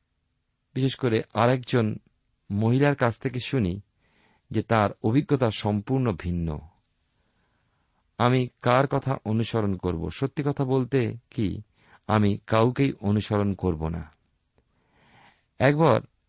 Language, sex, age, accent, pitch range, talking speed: Bengali, male, 50-69, native, 95-130 Hz, 100 wpm